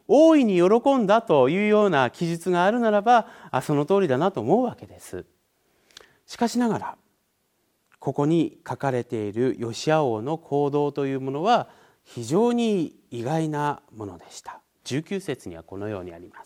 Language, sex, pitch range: Japanese, male, 140-215 Hz